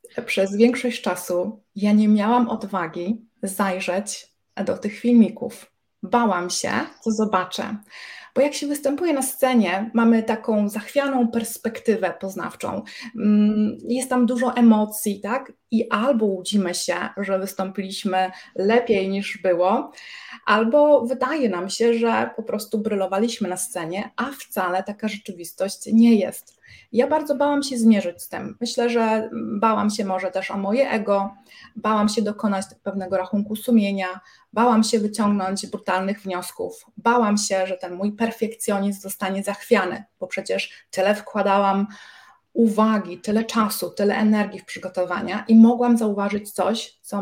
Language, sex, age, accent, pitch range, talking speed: Polish, female, 20-39, native, 195-235 Hz, 135 wpm